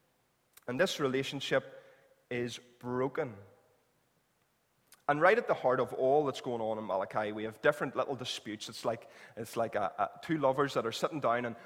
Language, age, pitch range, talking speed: English, 20-39, 115-150 Hz, 180 wpm